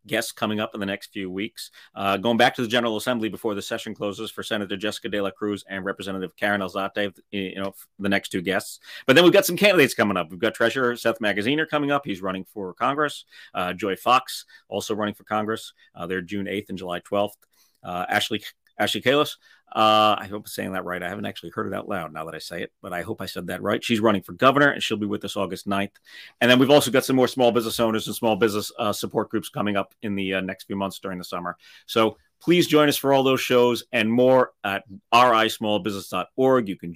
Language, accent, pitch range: English, American, 95-115 Hz